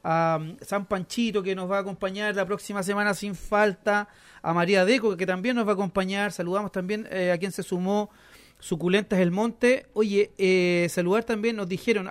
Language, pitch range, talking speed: Spanish, 165-210 Hz, 190 wpm